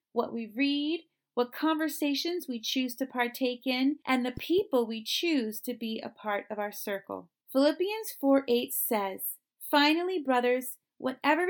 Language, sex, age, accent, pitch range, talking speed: English, female, 30-49, American, 230-300 Hz, 145 wpm